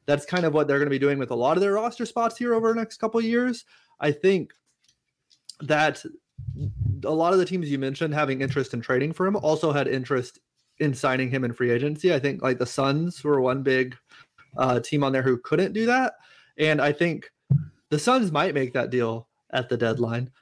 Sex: male